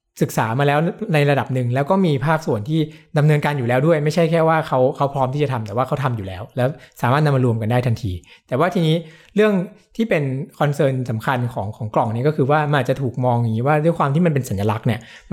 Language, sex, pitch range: Thai, male, 125-160 Hz